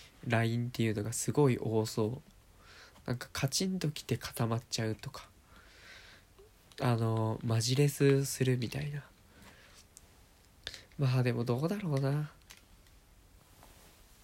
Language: Japanese